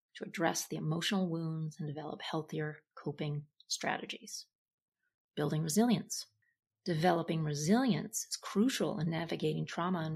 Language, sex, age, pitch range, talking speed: English, female, 30-49, 160-200 Hz, 120 wpm